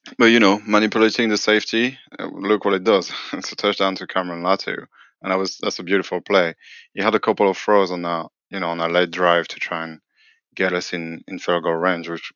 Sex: male